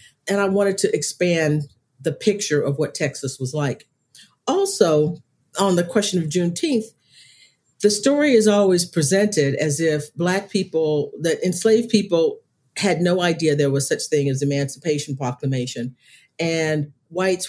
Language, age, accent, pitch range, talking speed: English, 50-69, American, 145-185 Hz, 145 wpm